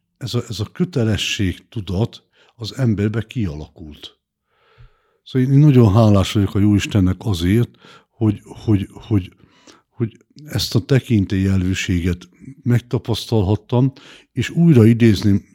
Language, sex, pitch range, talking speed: Hungarian, male, 95-115 Hz, 105 wpm